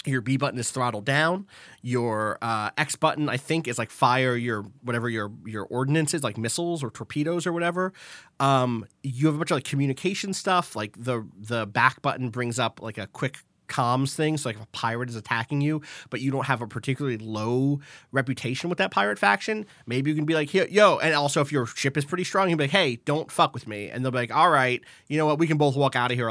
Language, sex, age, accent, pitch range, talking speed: English, male, 30-49, American, 115-160 Hz, 240 wpm